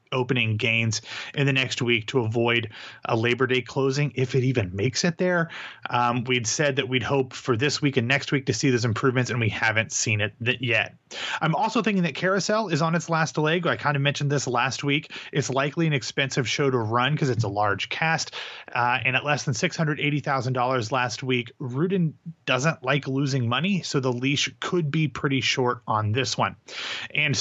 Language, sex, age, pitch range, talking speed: English, male, 30-49, 120-150 Hz, 205 wpm